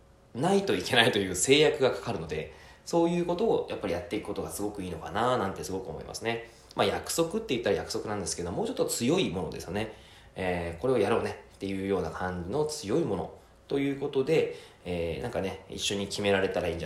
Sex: male